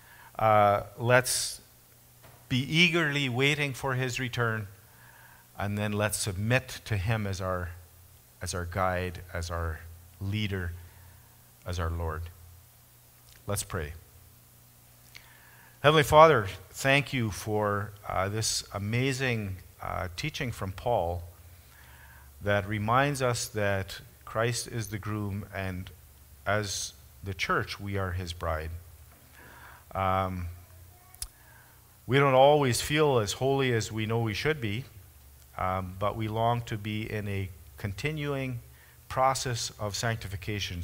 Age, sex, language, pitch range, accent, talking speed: 50-69, male, English, 90-120 Hz, American, 120 wpm